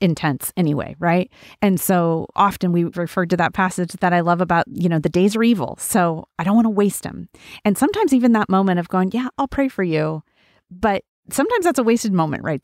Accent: American